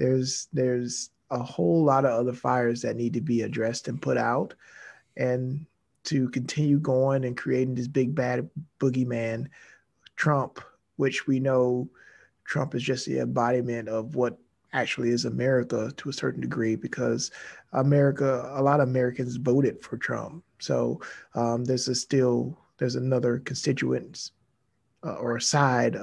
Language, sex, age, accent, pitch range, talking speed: English, male, 30-49, American, 120-130 Hz, 150 wpm